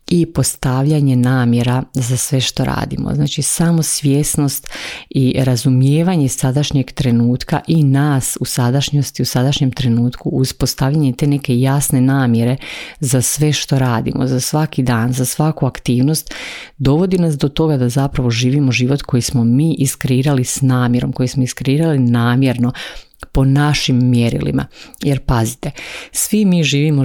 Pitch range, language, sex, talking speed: 125-150 Hz, Croatian, female, 140 wpm